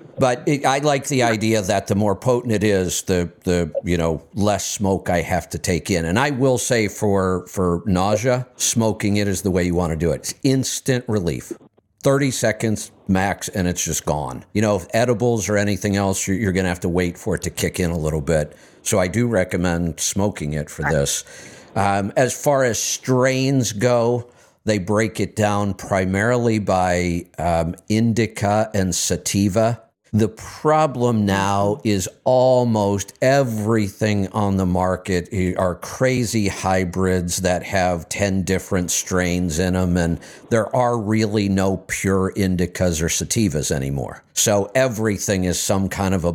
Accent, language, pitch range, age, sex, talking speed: American, English, 90-110 Hz, 50-69, male, 170 wpm